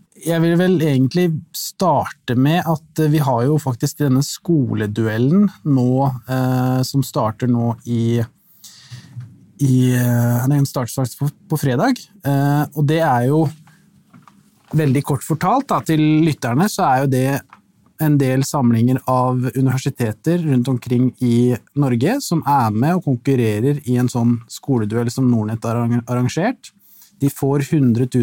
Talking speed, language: 135 wpm, English